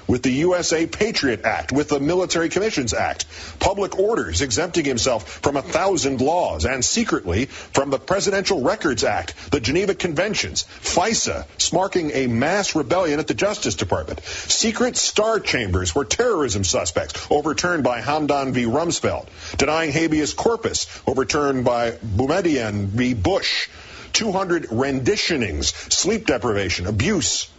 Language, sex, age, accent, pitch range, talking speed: English, male, 50-69, American, 105-150 Hz, 135 wpm